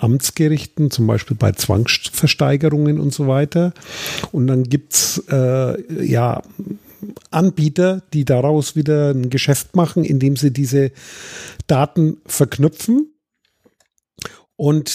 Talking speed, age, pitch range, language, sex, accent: 105 wpm, 50-69, 135-155 Hz, German, male, German